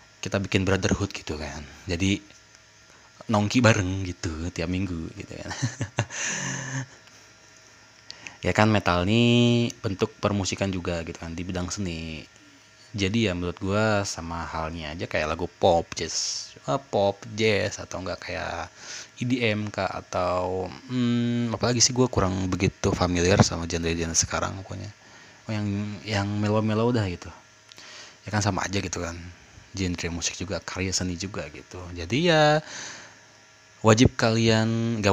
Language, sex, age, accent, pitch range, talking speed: Indonesian, male, 20-39, native, 90-110 Hz, 140 wpm